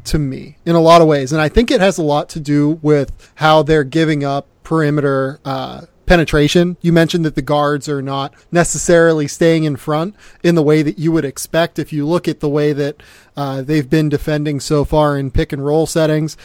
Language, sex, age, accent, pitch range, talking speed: English, male, 30-49, American, 140-165 Hz, 220 wpm